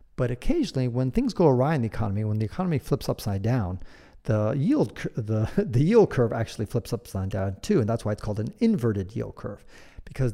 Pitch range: 105-135 Hz